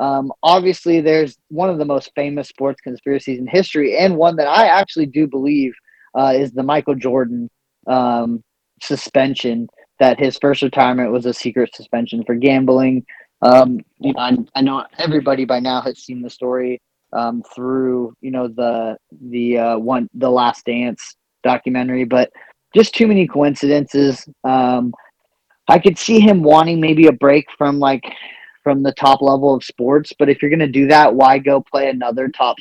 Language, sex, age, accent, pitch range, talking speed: English, male, 20-39, American, 125-140 Hz, 170 wpm